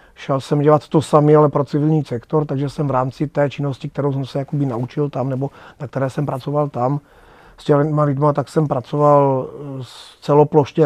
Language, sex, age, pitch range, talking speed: Czech, male, 30-49, 135-155 Hz, 195 wpm